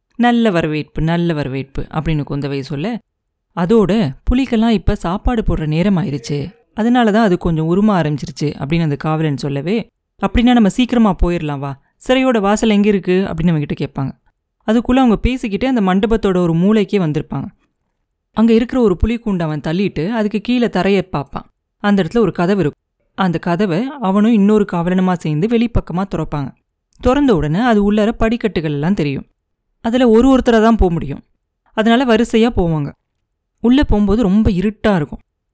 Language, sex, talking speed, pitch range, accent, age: Tamil, female, 150 wpm, 165-225 Hz, native, 20-39